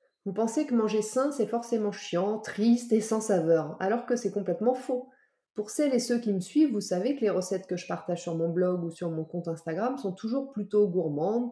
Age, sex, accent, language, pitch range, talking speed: 30-49, female, French, French, 185-235 Hz, 230 wpm